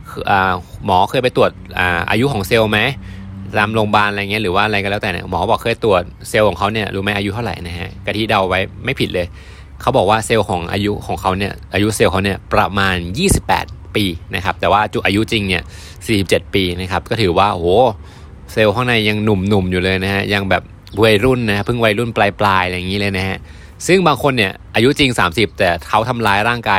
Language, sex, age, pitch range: Thai, male, 20-39, 90-110 Hz